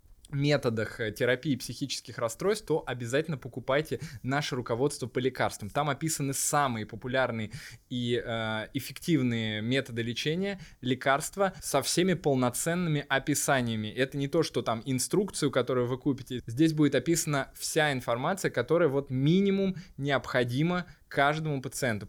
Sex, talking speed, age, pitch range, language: male, 120 wpm, 20-39, 120-145 Hz, Russian